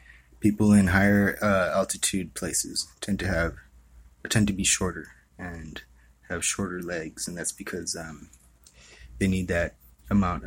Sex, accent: male, American